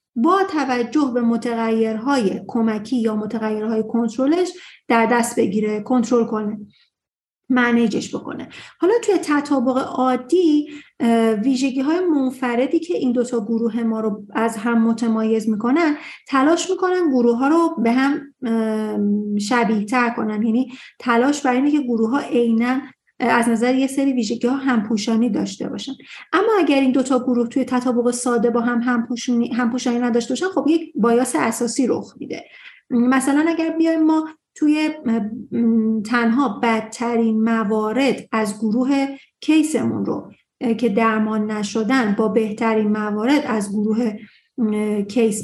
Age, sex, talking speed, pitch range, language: 40-59, female, 135 wpm, 225-280 Hz, Persian